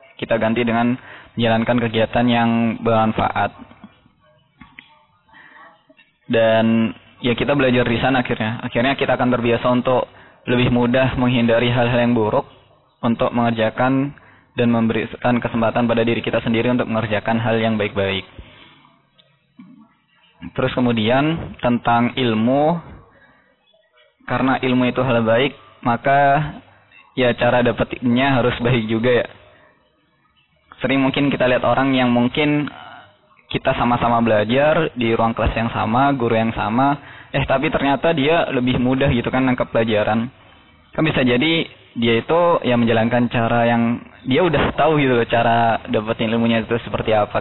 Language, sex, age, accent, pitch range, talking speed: Indonesian, male, 20-39, native, 115-130 Hz, 130 wpm